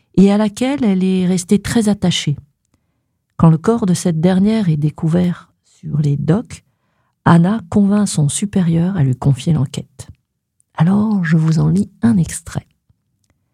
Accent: French